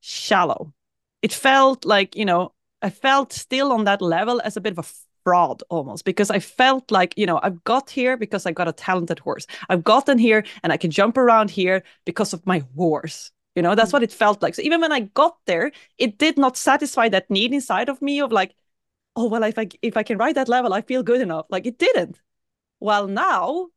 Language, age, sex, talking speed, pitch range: English, 20-39, female, 225 wpm, 180-235 Hz